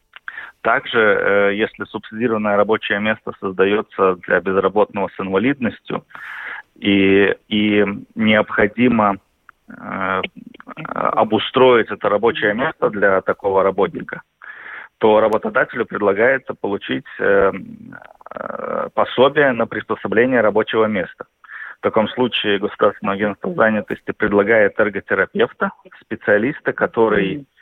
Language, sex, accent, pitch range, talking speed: Russian, male, native, 100-120 Hz, 85 wpm